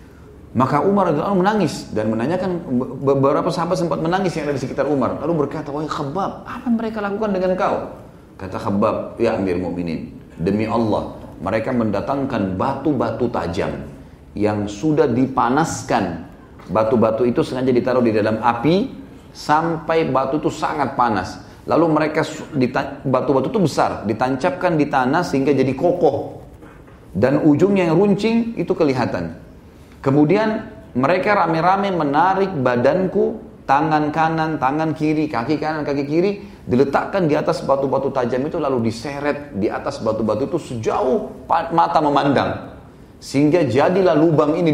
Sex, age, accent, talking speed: male, 30-49, Indonesian, 130 wpm